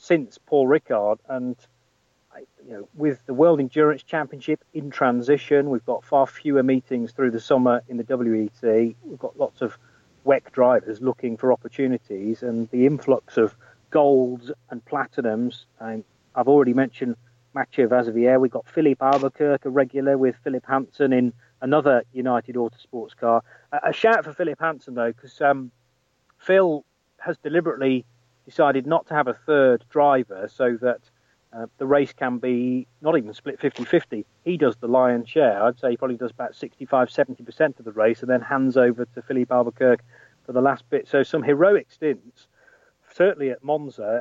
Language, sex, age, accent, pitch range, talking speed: English, male, 40-59, British, 125-145 Hz, 165 wpm